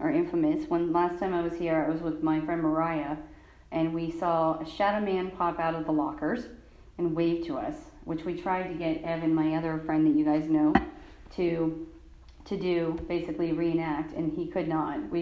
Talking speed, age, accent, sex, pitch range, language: 205 wpm, 40-59, American, female, 150-205 Hz, English